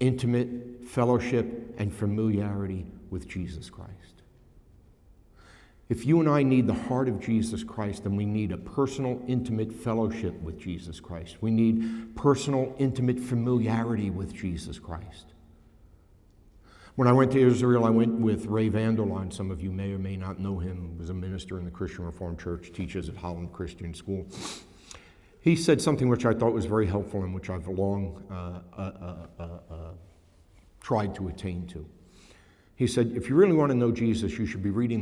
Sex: male